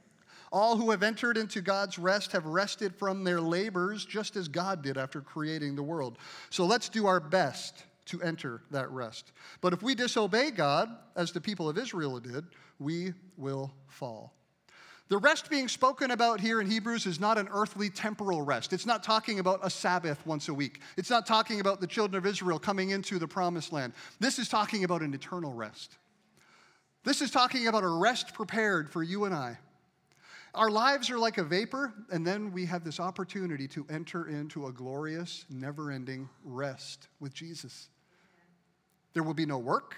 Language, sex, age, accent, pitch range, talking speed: English, male, 40-59, American, 160-220 Hz, 185 wpm